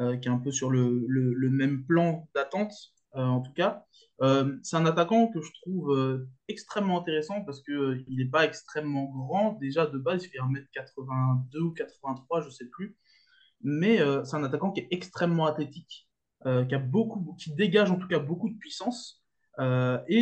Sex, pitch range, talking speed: male, 130-170 Hz, 200 wpm